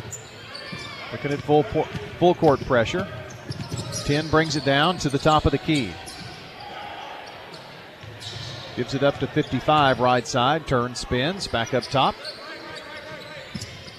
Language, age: English, 40-59